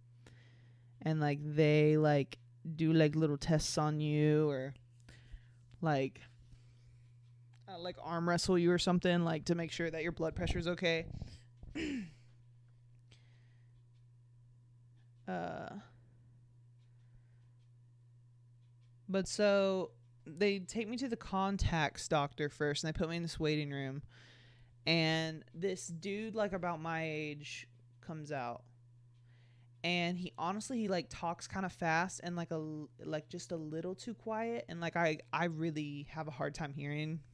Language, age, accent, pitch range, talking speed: English, 20-39, American, 120-175 Hz, 135 wpm